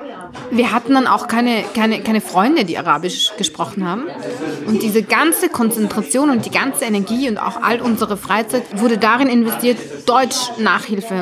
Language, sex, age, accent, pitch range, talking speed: German, female, 30-49, German, 200-245 Hz, 155 wpm